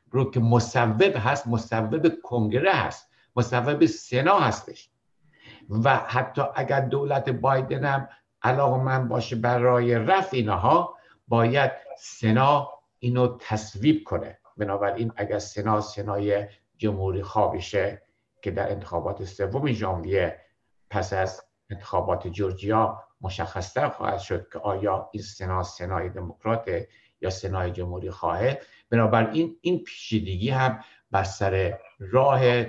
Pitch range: 100-135 Hz